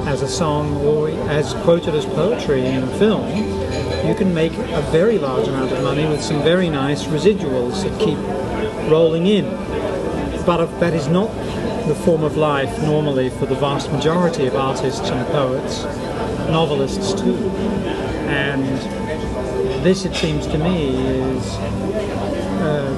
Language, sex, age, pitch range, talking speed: English, male, 40-59, 140-175 Hz, 145 wpm